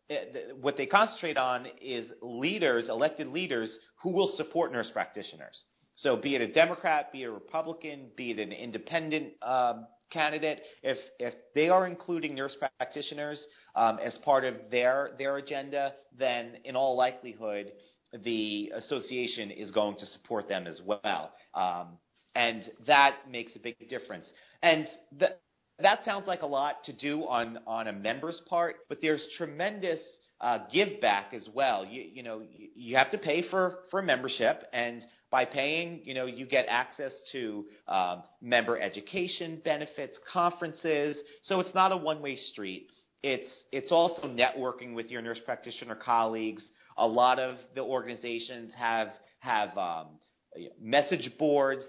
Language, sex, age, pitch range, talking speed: English, male, 40-59, 115-155 Hz, 155 wpm